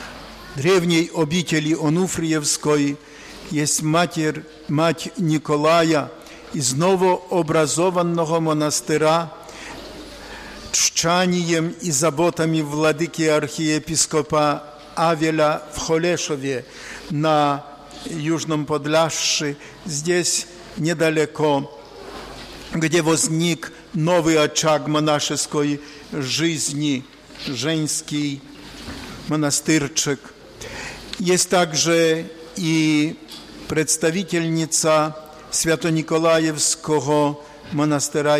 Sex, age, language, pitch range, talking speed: male, 50-69, Polish, 150-165 Hz, 60 wpm